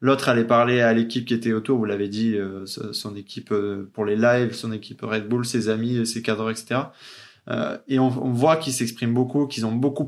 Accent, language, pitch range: French, French, 115-140 Hz